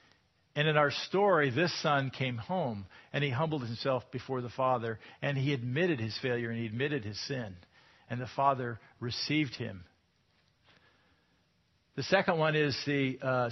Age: 50-69